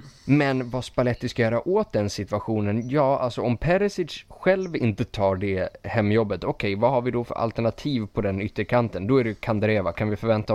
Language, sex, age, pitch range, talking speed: Swedish, male, 20-39, 100-120 Hz, 195 wpm